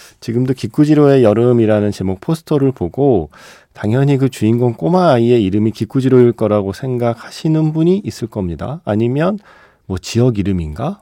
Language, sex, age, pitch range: Korean, male, 40-59, 95-130 Hz